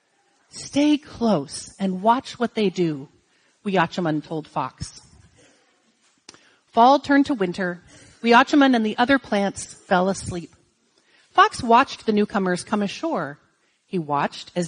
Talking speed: 125 wpm